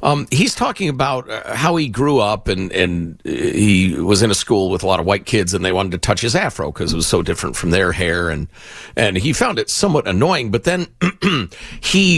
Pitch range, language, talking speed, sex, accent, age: 95-145 Hz, English, 225 wpm, male, American, 50-69